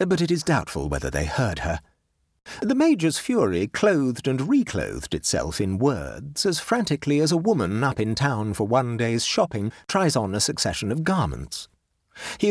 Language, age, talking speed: English, 40-59, 175 wpm